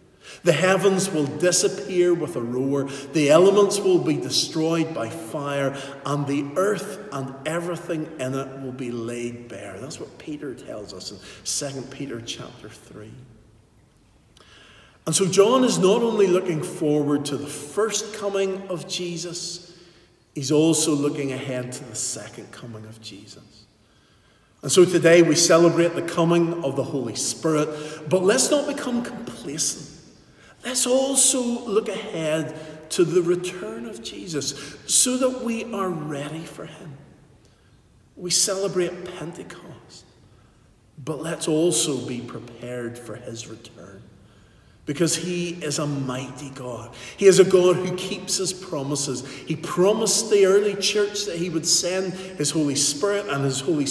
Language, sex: English, male